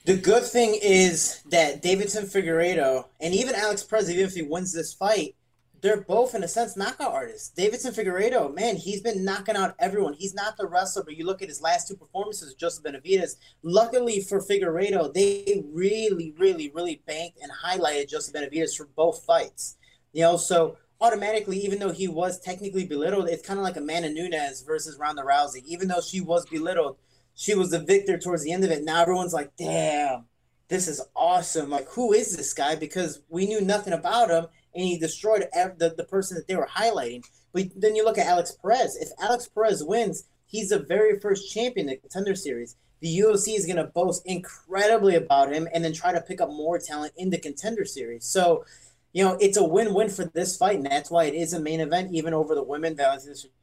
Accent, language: American, English